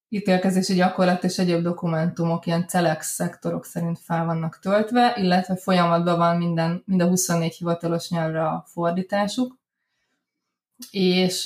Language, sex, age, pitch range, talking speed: Hungarian, female, 20-39, 175-205 Hz, 120 wpm